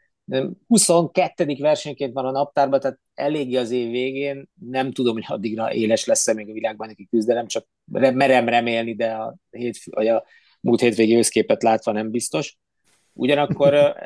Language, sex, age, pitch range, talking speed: Hungarian, male, 30-49, 105-130 Hz, 155 wpm